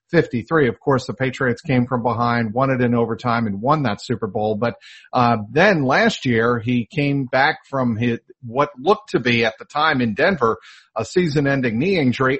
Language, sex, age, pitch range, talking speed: English, male, 50-69, 120-150 Hz, 195 wpm